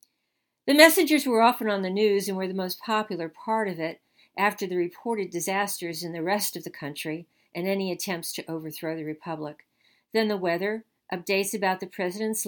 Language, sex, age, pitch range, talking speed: English, female, 50-69, 170-220 Hz, 190 wpm